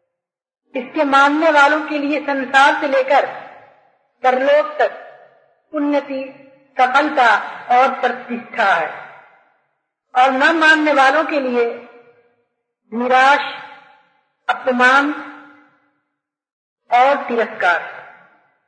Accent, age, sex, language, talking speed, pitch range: native, 50-69, female, Hindi, 80 wpm, 250-290 Hz